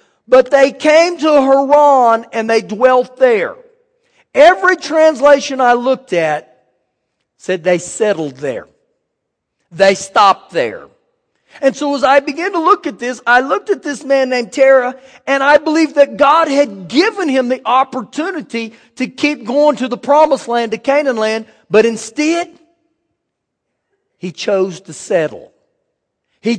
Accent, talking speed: American, 145 wpm